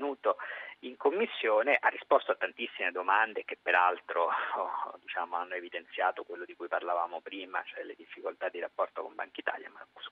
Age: 50-69